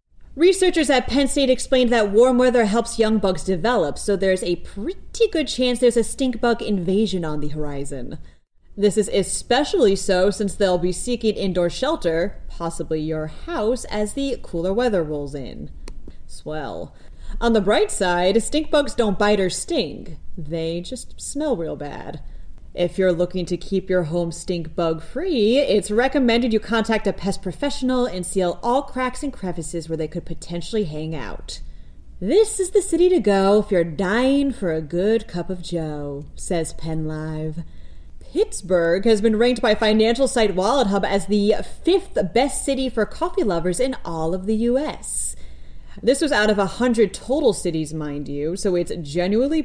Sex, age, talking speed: female, 30-49, 170 wpm